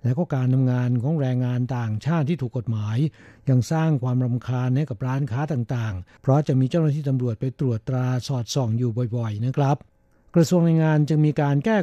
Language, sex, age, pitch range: Thai, male, 60-79, 125-150 Hz